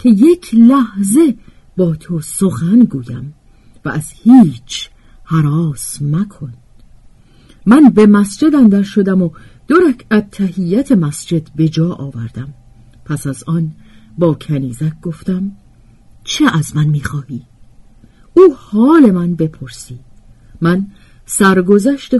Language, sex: Persian, female